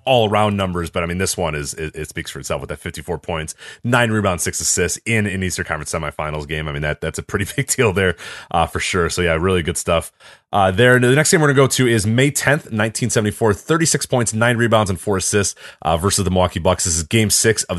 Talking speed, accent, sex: 255 wpm, American, male